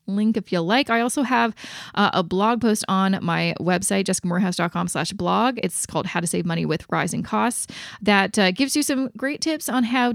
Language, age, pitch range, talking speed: English, 20-39, 185-260 Hz, 205 wpm